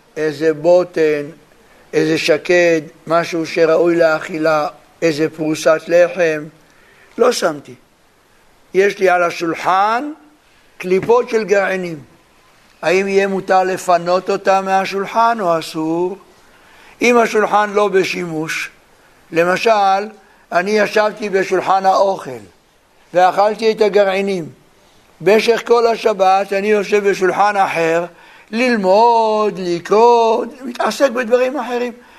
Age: 60-79